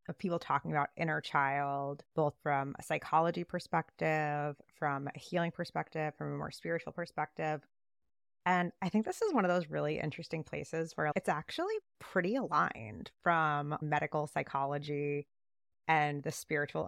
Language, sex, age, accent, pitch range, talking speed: English, female, 20-39, American, 145-170 Hz, 150 wpm